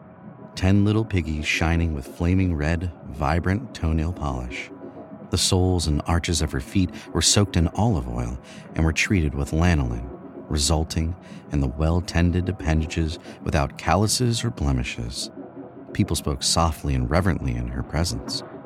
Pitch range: 70-90 Hz